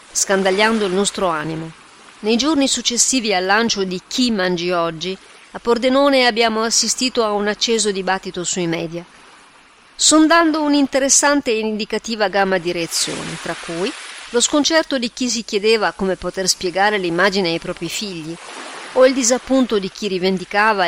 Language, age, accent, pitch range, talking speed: Italian, 40-59, native, 175-220 Hz, 145 wpm